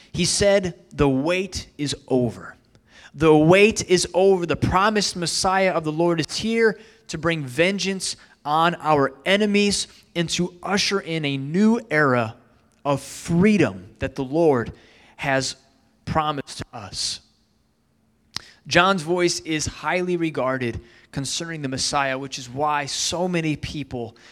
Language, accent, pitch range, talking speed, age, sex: English, American, 130-175 Hz, 130 wpm, 20-39, male